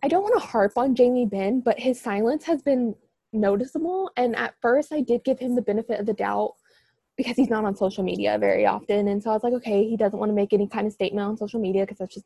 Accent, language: American, English